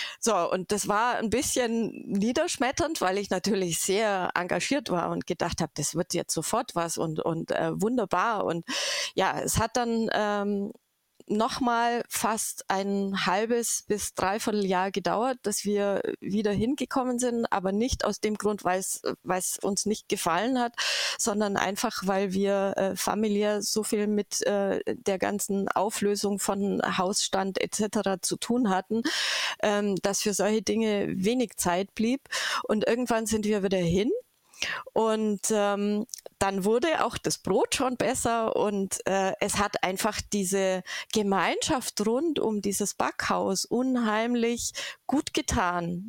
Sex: female